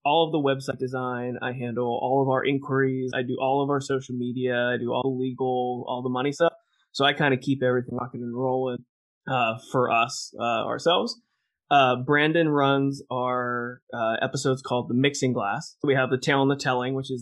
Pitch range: 125-140 Hz